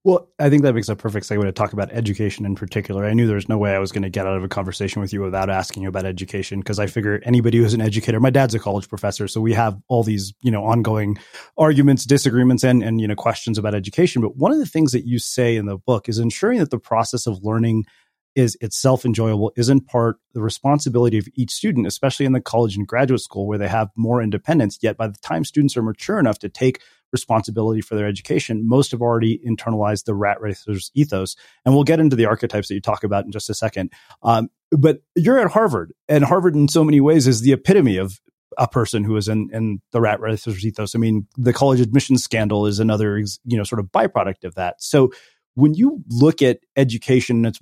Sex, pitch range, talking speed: male, 105-130 Hz, 235 wpm